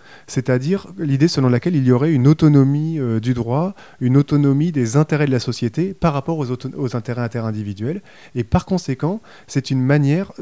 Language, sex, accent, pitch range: French, male, French, 120-150 Hz